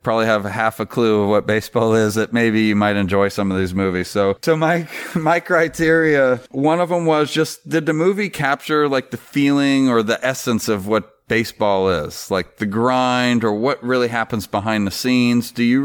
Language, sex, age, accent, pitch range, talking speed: English, male, 40-59, American, 105-135 Hz, 205 wpm